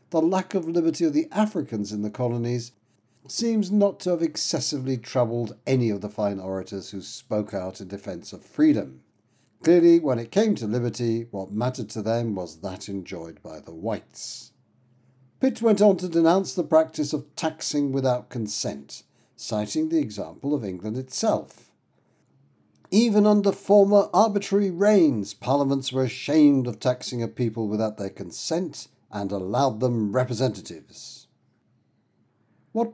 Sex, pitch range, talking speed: male, 110-175 Hz, 150 wpm